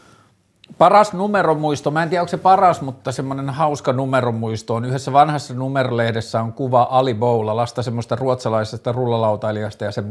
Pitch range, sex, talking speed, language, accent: 120-145 Hz, male, 150 wpm, Finnish, native